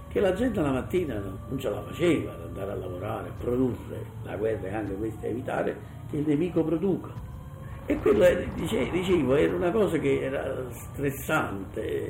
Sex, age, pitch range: male, 50-69, 105-135 Hz